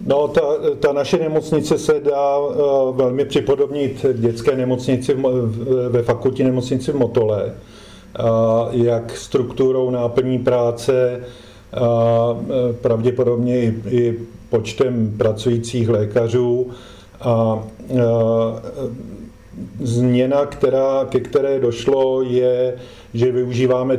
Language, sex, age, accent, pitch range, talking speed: Czech, male, 40-59, native, 115-125 Hz, 105 wpm